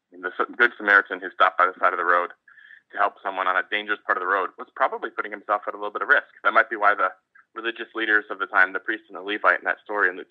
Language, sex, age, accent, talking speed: English, male, 20-39, American, 295 wpm